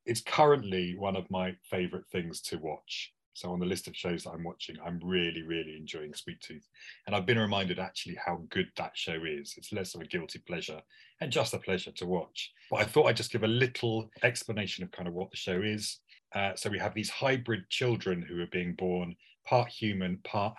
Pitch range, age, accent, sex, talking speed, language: 90-115 Hz, 30-49, British, male, 220 wpm, English